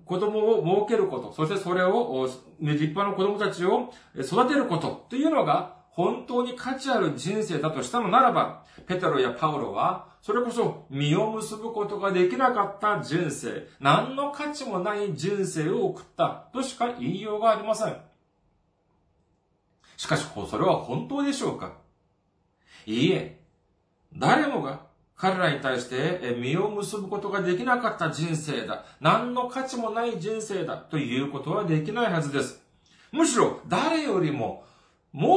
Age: 40-59